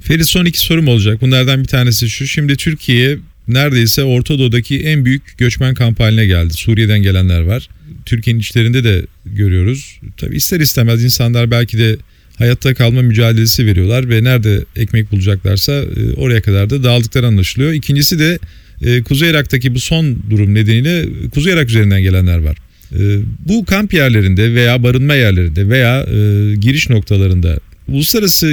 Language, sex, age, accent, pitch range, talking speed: Turkish, male, 40-59, native, 105-130 Hz, 140 wpm